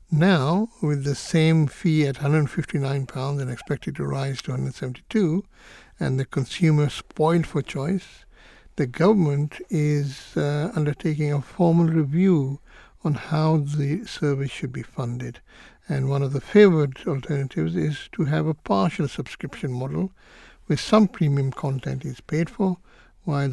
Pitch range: 135-160 Hz